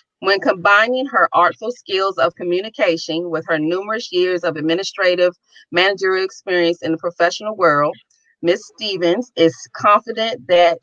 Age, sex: 30-49, female